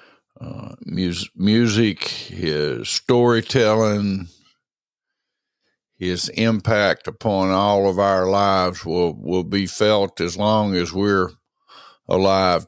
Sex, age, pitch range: male, 60-79, 90-105 Hz